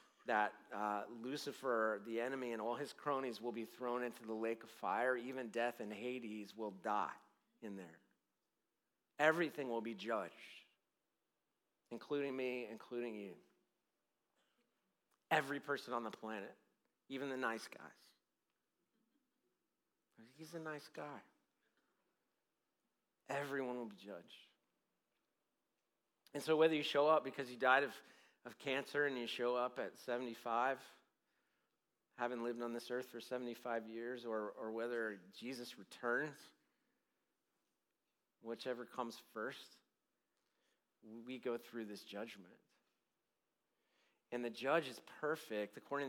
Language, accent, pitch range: English, American, 110-130 Hz